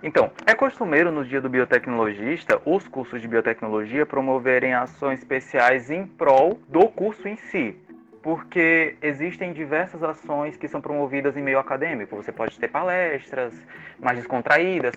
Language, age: Portuguese, 20-39